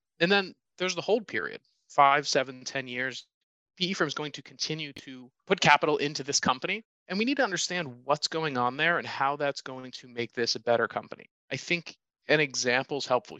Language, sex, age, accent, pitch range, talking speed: English, male, 30-49, American, 125-165 Hz, 210 wpm